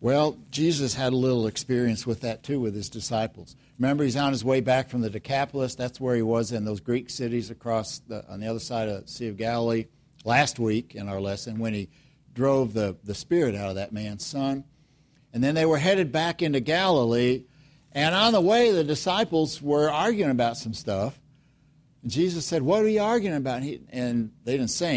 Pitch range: 125-155 Hz